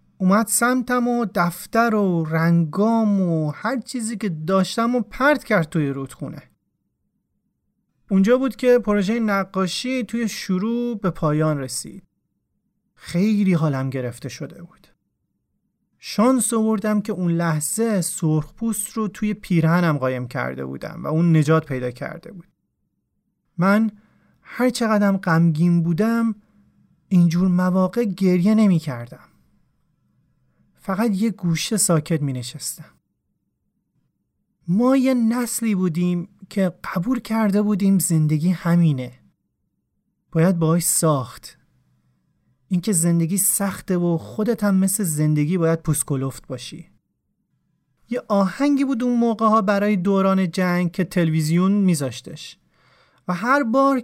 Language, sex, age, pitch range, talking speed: Persian, male, 30-49, 165-220 Hz, 115 wpm